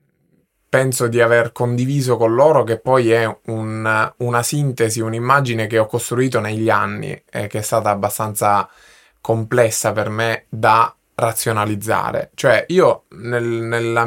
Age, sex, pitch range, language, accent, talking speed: 20-39, male, 110-130 Hz, Italian, native, 130 wpm